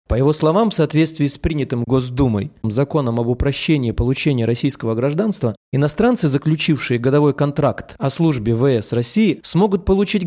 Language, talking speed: Russian, 140 wpm